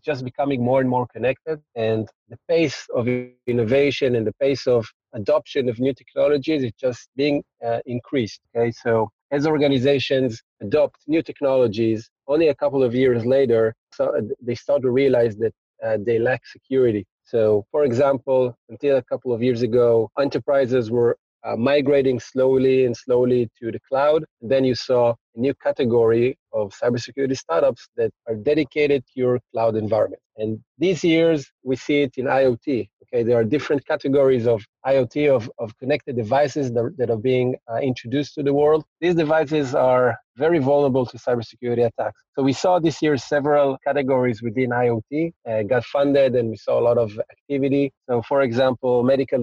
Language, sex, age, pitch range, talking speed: English, male, 30-49, 120-140 Hz, 170 wpm